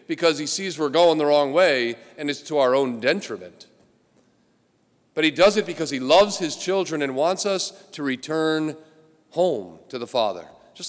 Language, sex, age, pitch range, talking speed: English, male, 40-59, 140-185 Hz, 180 wpm